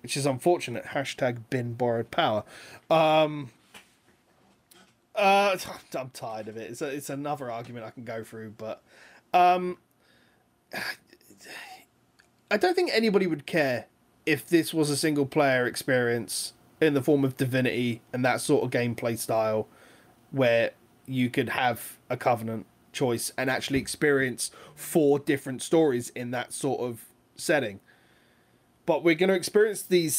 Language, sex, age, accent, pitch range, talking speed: English, male, 20-39, British, 125-165 Hz, 140 wpm